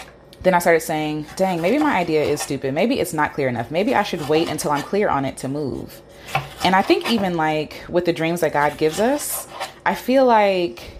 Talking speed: 225 wpm